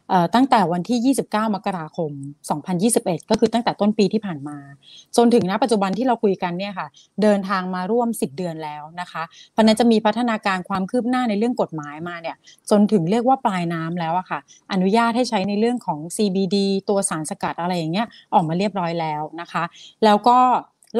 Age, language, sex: 30-49, Thai, female